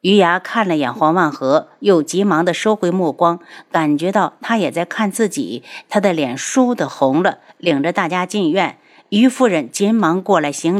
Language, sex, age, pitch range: Chinese, female, 50-69, 175-245 Hz